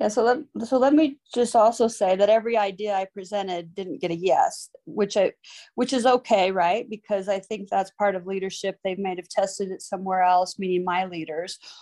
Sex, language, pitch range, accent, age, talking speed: female, English, 180-205 Hz, American, 30-49, 210 wpm